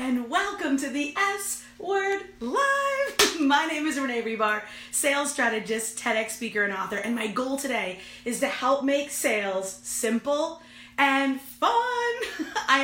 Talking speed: 145 wpm